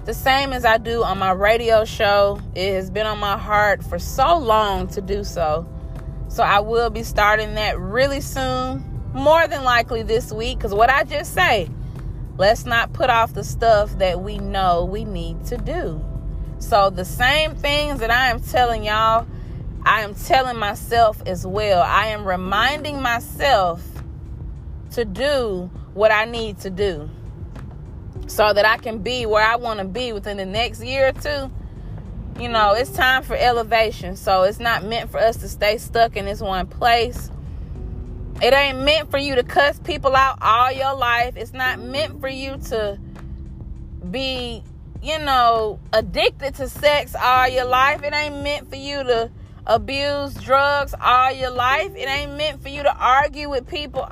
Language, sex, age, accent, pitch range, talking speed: English, female, 20-39, American, 200-265 Hz, 175 wpm